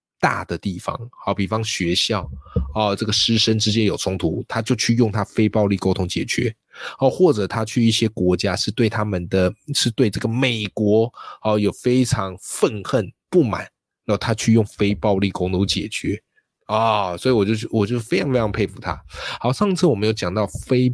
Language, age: Chinese, 20-39